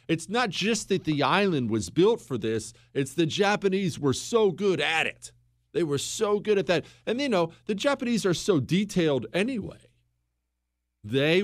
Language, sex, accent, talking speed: English, male, American, 180 wpm